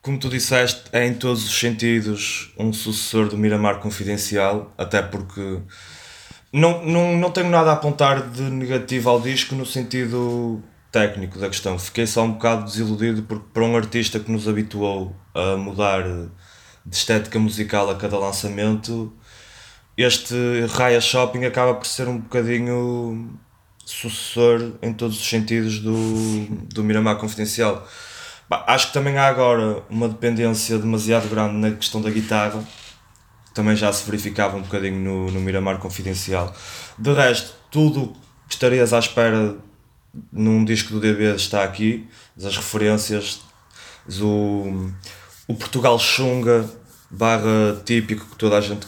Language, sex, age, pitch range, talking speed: Portuguese, male, 20-39, 105-120 Hz, 140 wpm